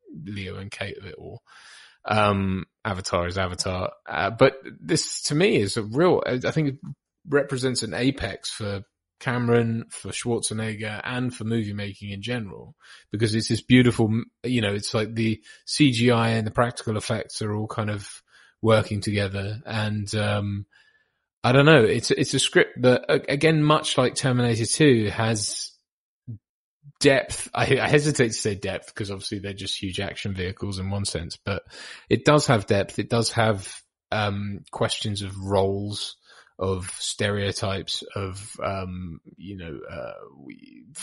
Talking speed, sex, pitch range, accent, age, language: 155 wpm, male, 100-125 Hz, British, 20-39, English